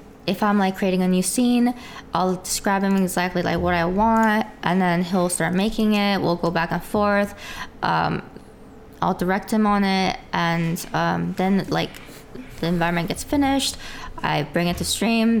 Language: English